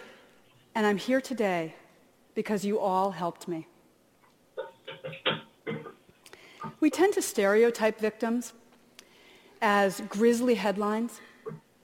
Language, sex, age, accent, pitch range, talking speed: English, female, 40-59, American, 195-250 Hz, 85 wpm